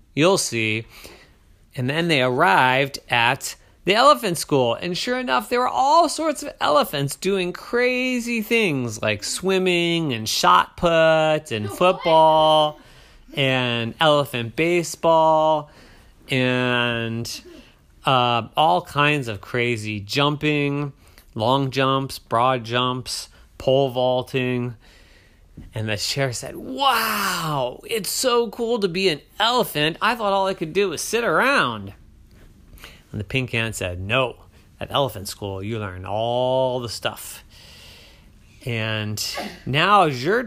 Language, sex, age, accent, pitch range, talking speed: English, male, 30-49, American, 110-175 Hz, 125 wpm